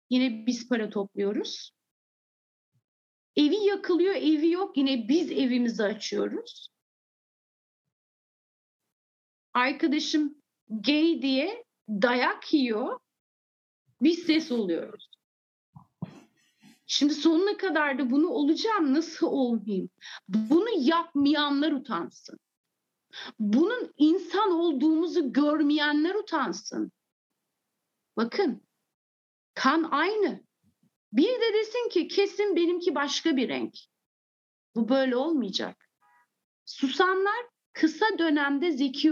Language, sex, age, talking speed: English, female, 40-59, 85 wpm